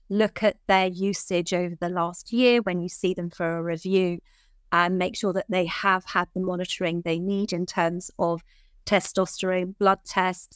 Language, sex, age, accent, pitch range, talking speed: English, female, 30-49, British, 180-215 Hz, 180 wpm